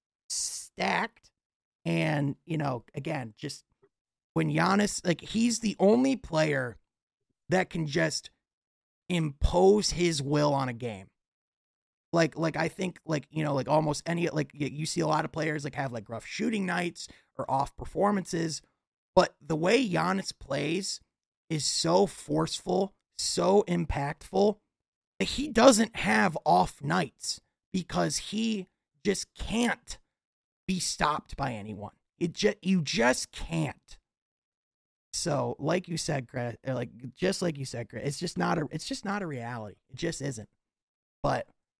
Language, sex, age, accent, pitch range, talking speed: English, male, 30-49, American, 125-170 Hz, 145 wpm